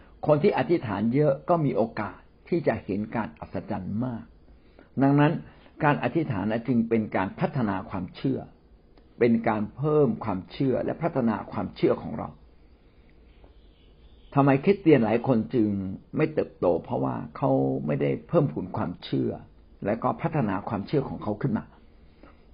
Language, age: Thai, 60-79